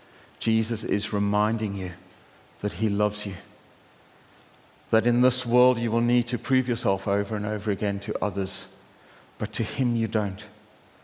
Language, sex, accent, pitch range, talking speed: English, male, British, 100-115 Hz, 160 wpm